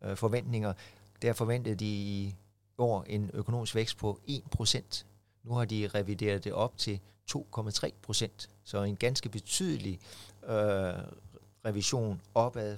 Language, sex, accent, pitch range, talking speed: Danish, male, native, 100-115 Hz, 115 wpm